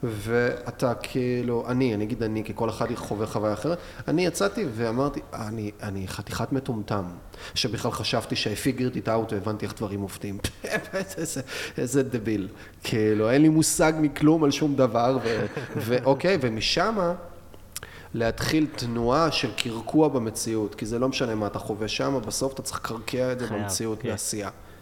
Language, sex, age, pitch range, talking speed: Hebrew, male, 30-49, 105-135 Hz, 145 wpm